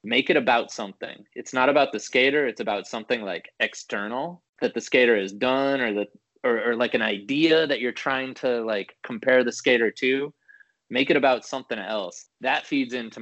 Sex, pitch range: male, 105-130 Hz